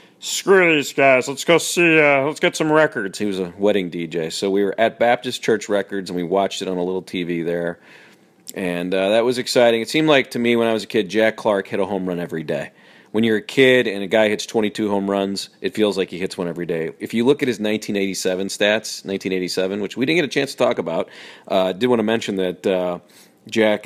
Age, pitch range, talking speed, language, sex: 40-59, 95-130 Hz, 250 wpm, English, male